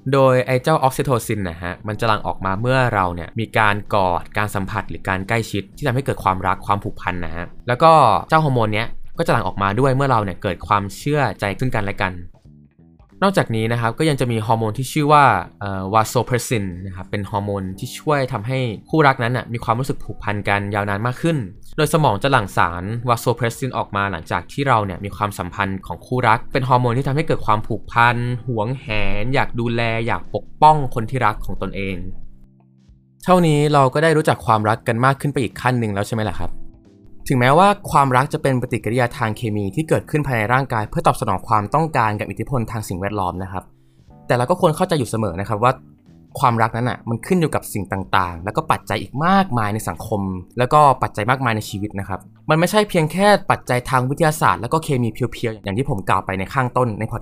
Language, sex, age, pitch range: Thai, male, 20-39, 100-130 Hz